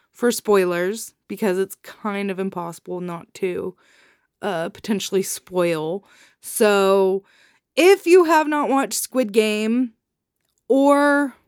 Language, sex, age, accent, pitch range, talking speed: English, female, 20-39, American, 190-255 Hz, 110 wpm